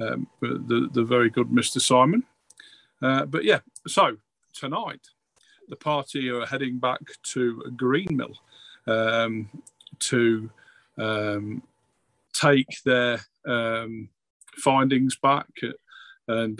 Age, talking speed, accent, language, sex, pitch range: 40-59, 105 wpm, British, English, male, 120-145 Hz